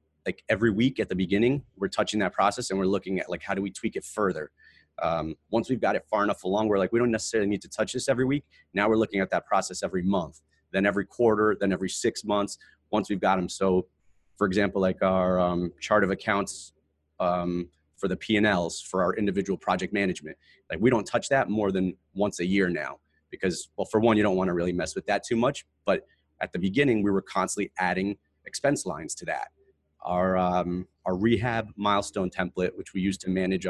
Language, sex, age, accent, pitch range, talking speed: English, male, 30-49, American, 90-110 Hz, 225 wpm